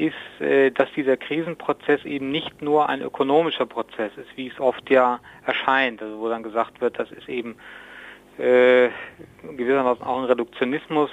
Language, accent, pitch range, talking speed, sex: German, German, 125-150 Hz, 155 wpm, male